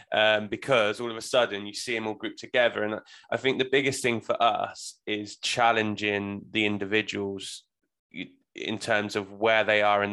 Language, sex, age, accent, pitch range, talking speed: English, male, 20-39, British, 100-115 Hz, 185 wpm